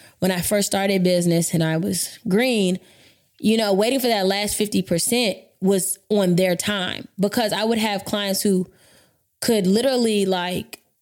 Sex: female